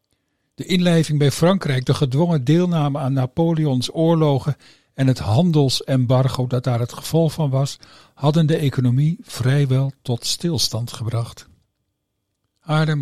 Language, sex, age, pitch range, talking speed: Dutch, male, 50-69, 125-150 Hz, 125 wpm